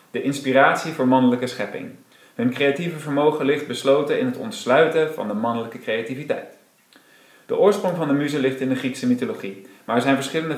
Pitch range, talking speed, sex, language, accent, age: 125-145 Hz, 175 wpm, male, Dutch, Dutch, 40-59